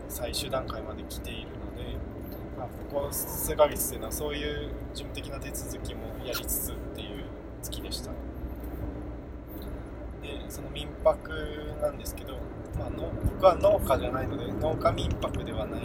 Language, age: Japanese, 20-39